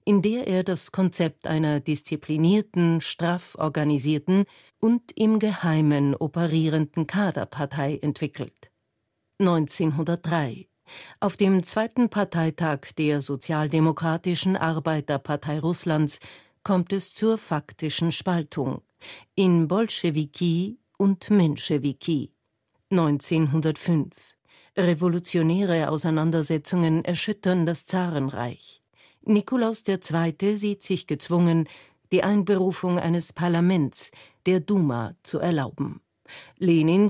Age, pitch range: 50-69, 150-190 Hz